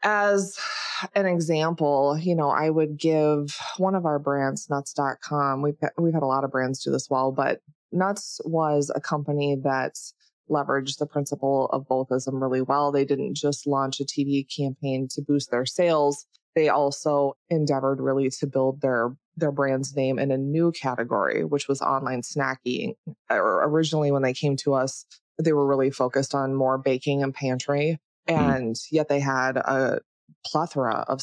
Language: English